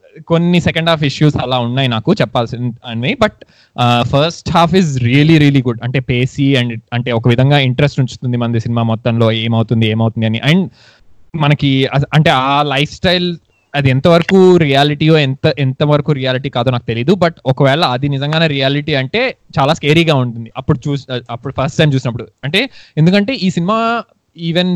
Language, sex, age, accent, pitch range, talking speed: Telugu, male, 20-39, native, 120-150 Hz, 160 wpm